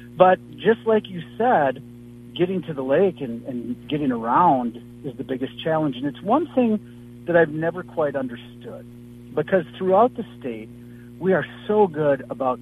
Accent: American